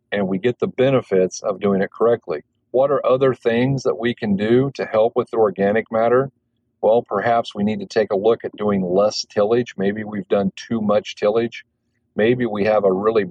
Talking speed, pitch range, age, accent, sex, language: 210 wpm, 95-115 Hz, 40-59, American, male, English